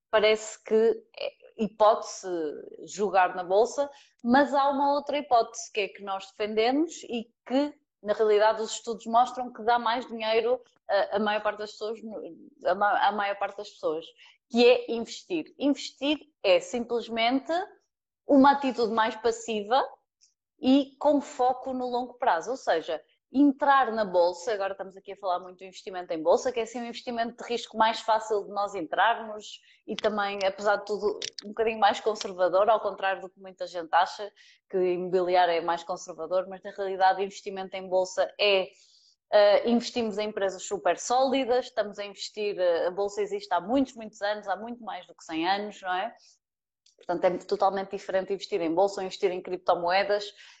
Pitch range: 195-250 Hz